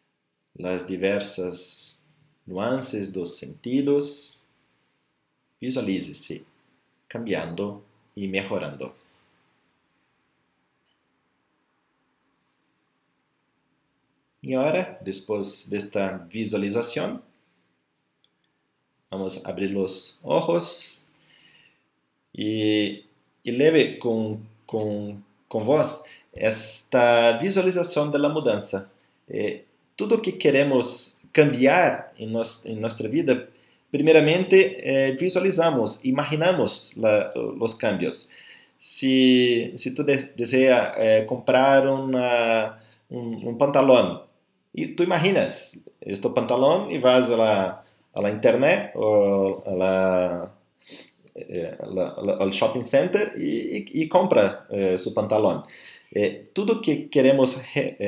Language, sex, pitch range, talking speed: Portuguese, male, 100-145 Hz, 95 wpm